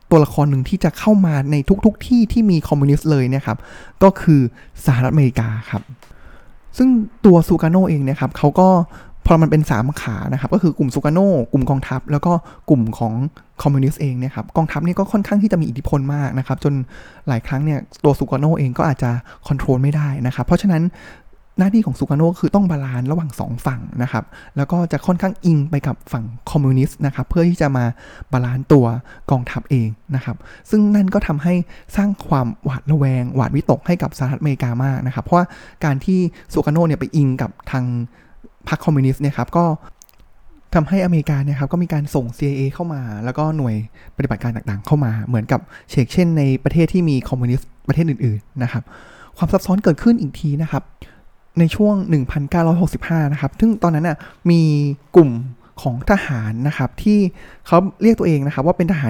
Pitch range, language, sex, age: 130-175 Hz, Thai, male, 20-39